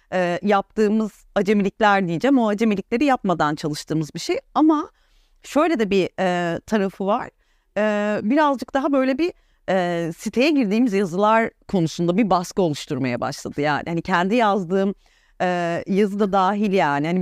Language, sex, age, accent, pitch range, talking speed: Turkish, female, 40-59, native, 175-230 Hz, 145 wpm